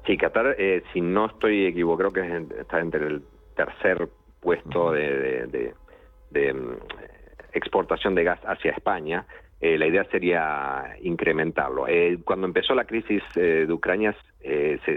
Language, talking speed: Spanish, 140 wpm